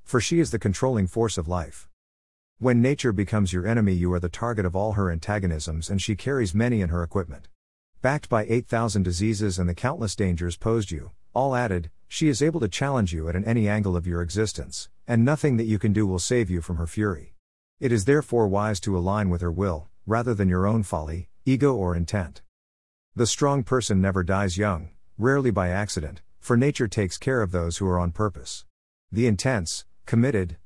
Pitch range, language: 90-115 Hz, English